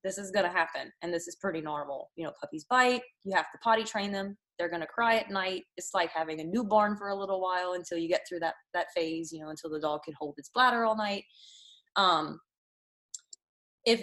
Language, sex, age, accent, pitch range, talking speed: English, female, 20-39, American, 180-235 Hz, 225 wpm